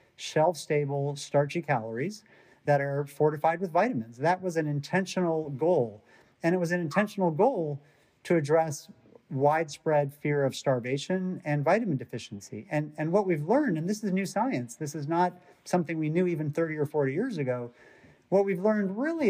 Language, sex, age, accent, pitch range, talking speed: English, male, 40-59, American, 135-175 Hz, 170 wpm